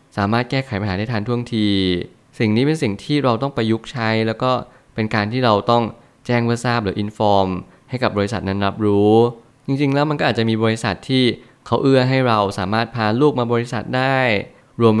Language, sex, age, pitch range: Thai, male, 20-39, 100-125 Hz